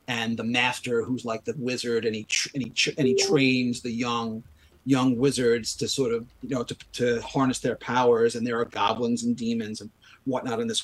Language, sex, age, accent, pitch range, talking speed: English, male, 40-59, American, 115-145 Hz, 220 wpm